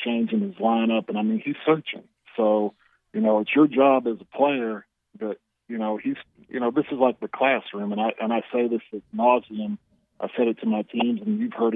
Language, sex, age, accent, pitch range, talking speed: English, male, 40-59, American, 115-155 Hz, 230 wpm